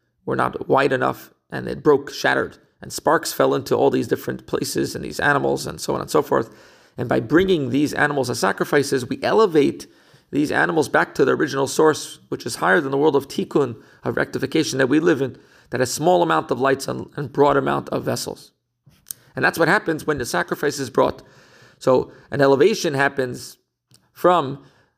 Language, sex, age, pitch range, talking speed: English, male, 40-59, 135-170 Hz, 190 wpm